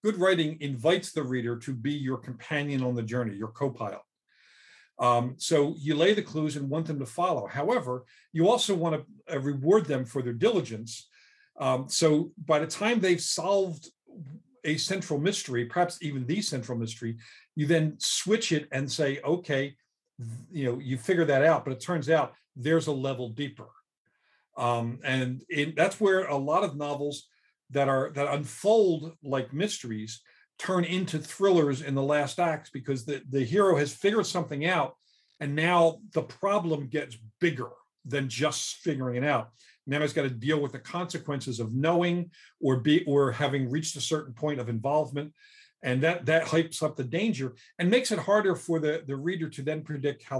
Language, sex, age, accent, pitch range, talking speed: English, male, 50-69, American, 130-170 Hz, 185 wpm